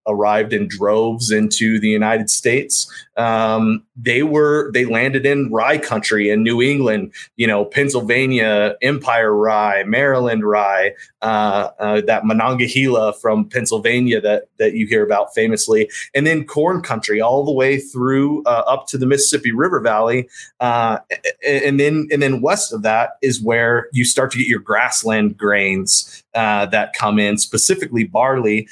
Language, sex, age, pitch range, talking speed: English, male, 30-49, 110-135 Hz, 155 wpm